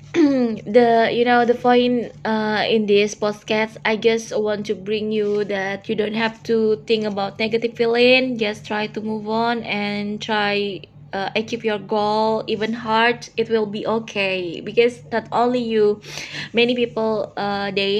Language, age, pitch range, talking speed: English, 20-39, 200-225 Hz, 165 wpm